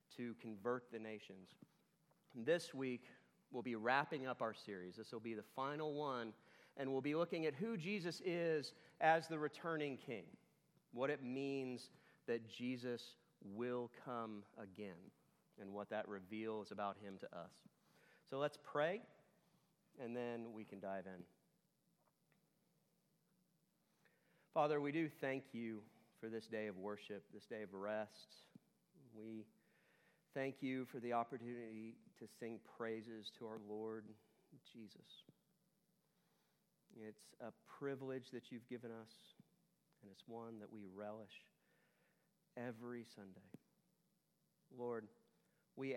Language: English